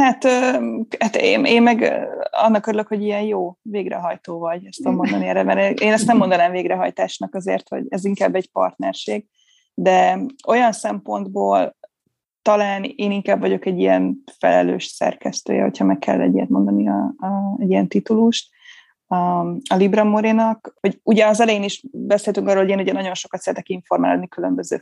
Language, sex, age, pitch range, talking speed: Hungarian, female, 20-39, 180-220 Hz, 160 wpm